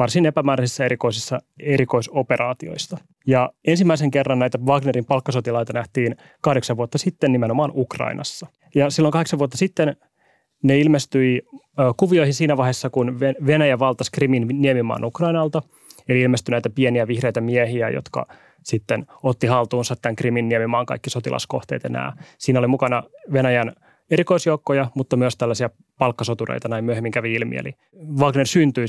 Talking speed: 140 wpm